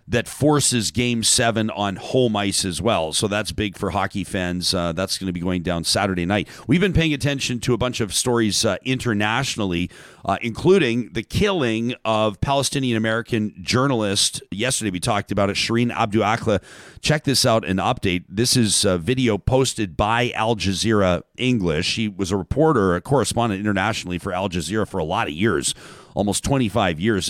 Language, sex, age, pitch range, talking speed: English, male, 40-59, 100-130 Hz, 180 wpm